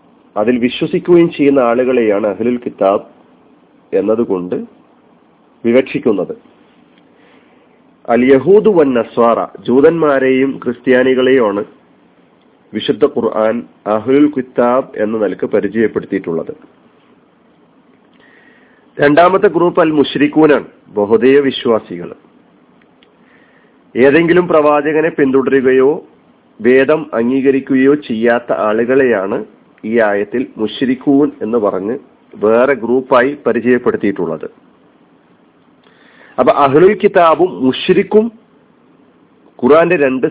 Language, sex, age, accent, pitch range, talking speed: Malayalam, male, 40-59, native, 120-155 Hz, 70 wpm